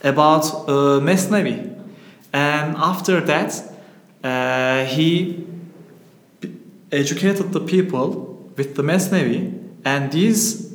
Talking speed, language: 100 wpm, English